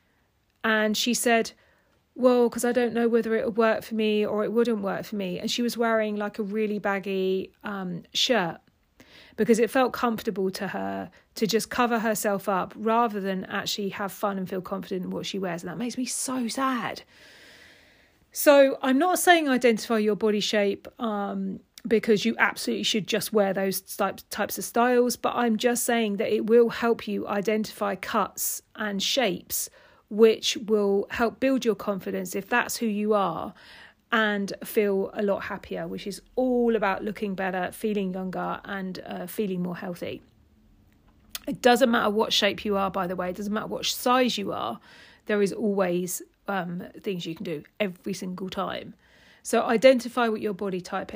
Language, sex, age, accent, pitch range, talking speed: English, female, 40-59, British, 195-235 Hz, 180 wpm